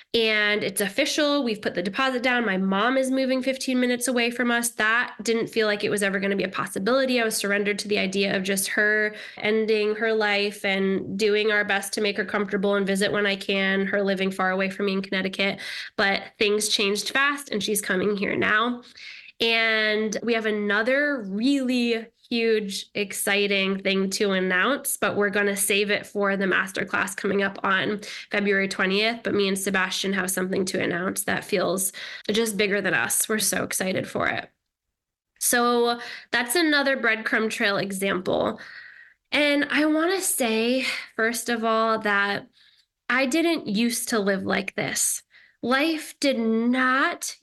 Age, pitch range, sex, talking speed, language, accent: 10-29, 200-245 Hz, female, 175 wpm, English, American